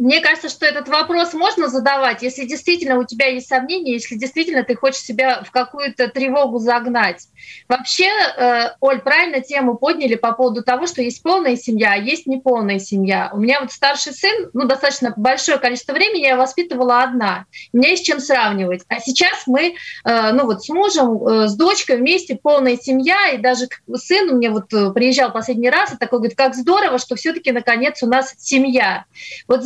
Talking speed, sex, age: 185 wpm, female, 30-49